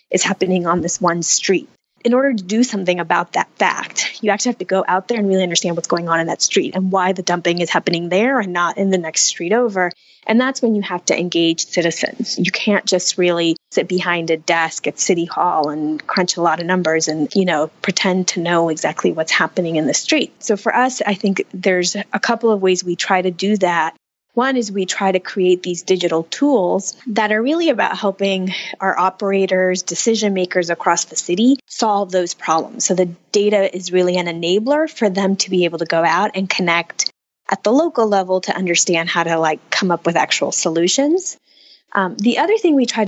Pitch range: 175-210 Hz